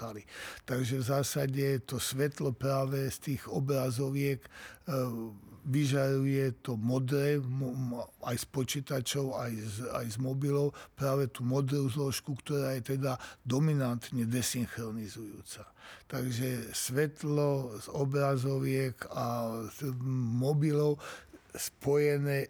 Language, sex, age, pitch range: Slovak, male, 60-79, 125-140 Hz